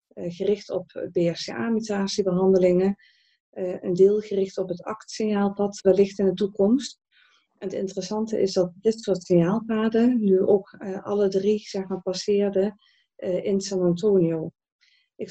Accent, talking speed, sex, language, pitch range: Dutch, 140 wpm, female, Dutch, 175-210 Hz